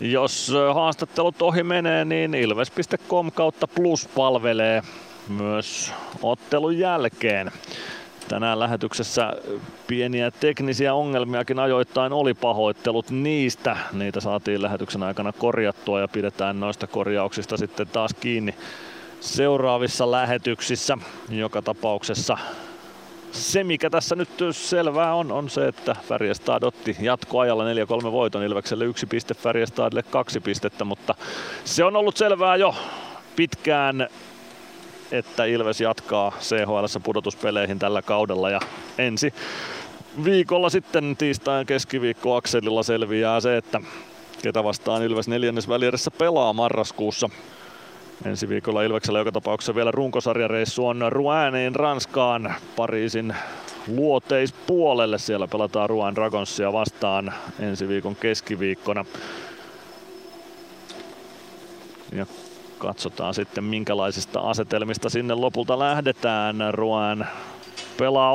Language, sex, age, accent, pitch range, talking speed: Finnish, male, 30-49, native, 110-145 Hz, 100 wpm